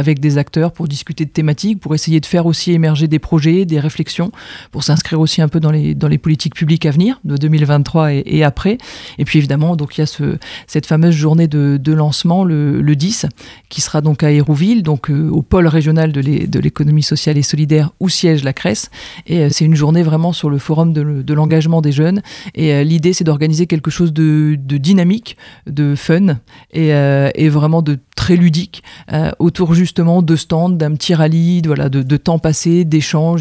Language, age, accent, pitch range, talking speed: French, 40-59, French, 150-170 Hz, 215 wpm